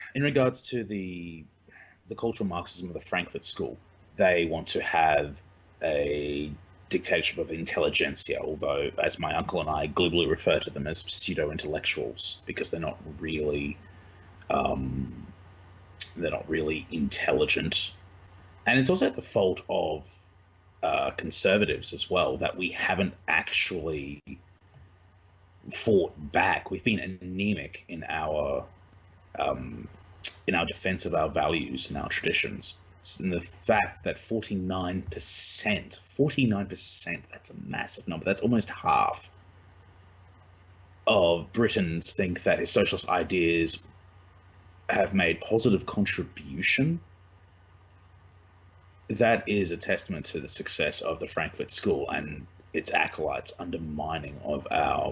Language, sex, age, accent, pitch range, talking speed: English, male, 30-49, Australian, 85-95 Hz, 120 wpm